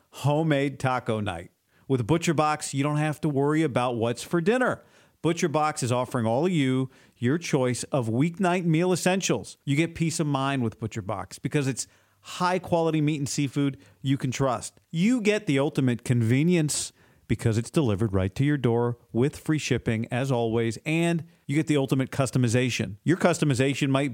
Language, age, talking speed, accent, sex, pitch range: English, 50-69, 180 wpm, American, male, 125-170 Hz